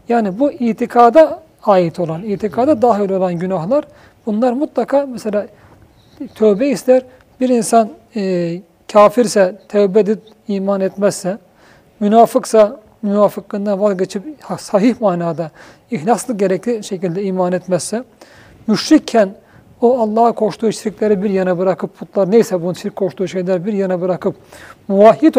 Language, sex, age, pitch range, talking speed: Turkish, male, 40-59, 190-245 Hz, 120 wpm